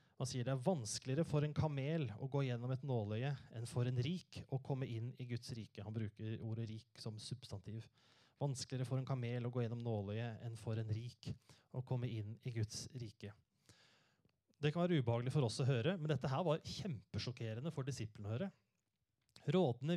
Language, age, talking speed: English, 30-49, 190 wpm